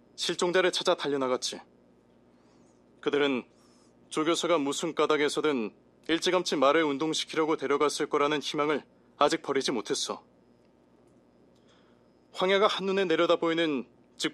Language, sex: Korean, male